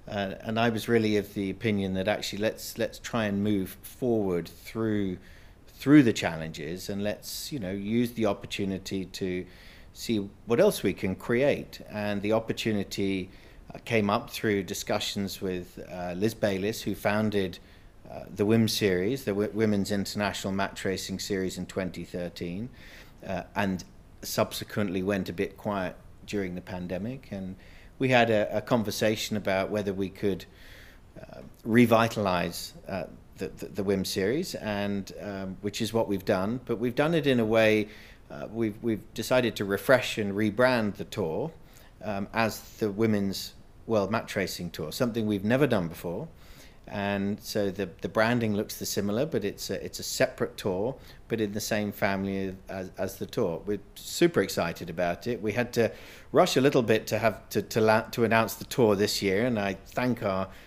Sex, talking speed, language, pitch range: male, 175 wpm, Swedish, 95-110 Hz